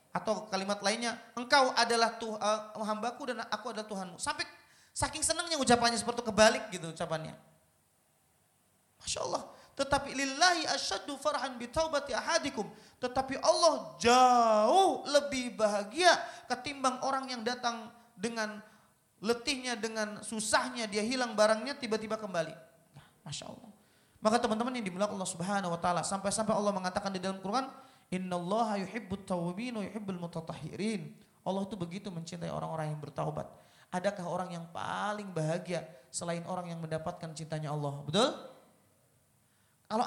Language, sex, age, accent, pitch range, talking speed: Indonesian, male, 30-49, native, 175-240 Hz, 120 wpm